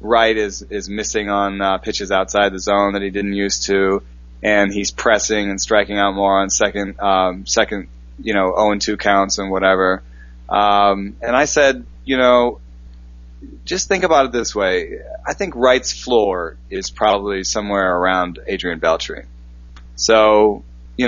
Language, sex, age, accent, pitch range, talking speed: English, male, 20-39, American, 95-115 Hz, 165 wpm